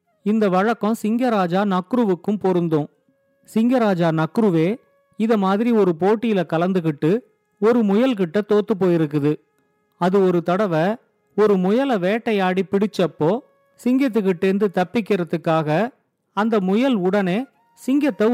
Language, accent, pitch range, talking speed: Tamil, native, 180-225 Hz, 95 wpm